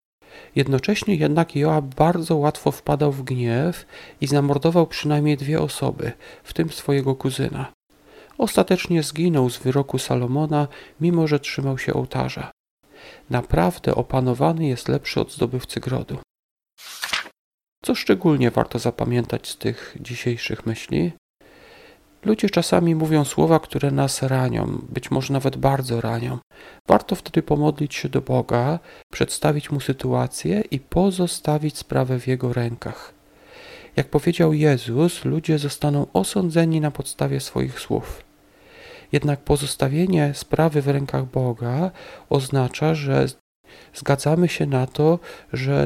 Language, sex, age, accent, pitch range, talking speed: Polish, male, 40-59, native, 130-160 Hz, 120 wpm